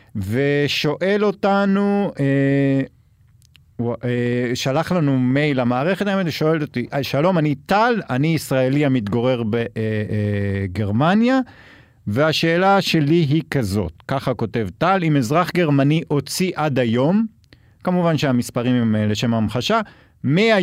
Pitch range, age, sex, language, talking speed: 120-165 Hz, 50-69, male, Hebrew, 100 wpm